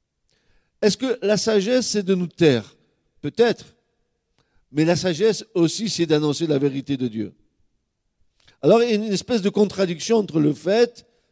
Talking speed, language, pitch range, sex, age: 160 wpm, French, 135-215 Hz, male, 50-69